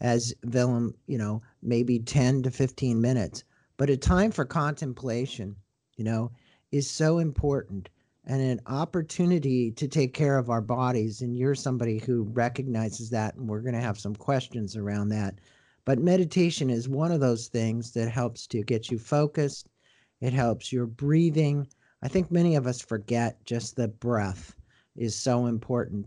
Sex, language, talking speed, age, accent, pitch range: male, English, 165 wpm, 50-69, American, 115-145 Hz